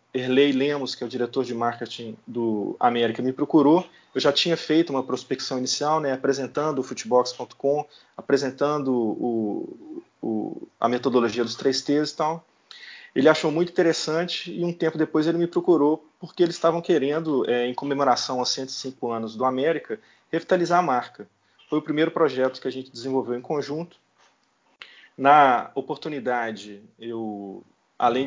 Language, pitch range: Portuguese, 120-155 Hz